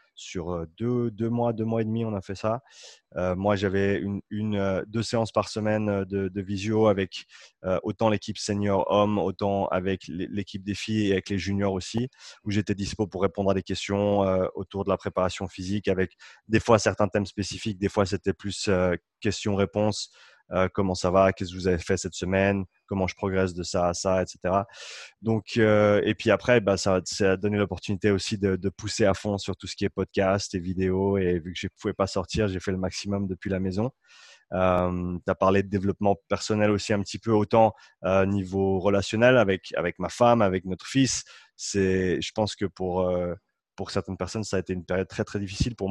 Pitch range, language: 95-105 Hz, French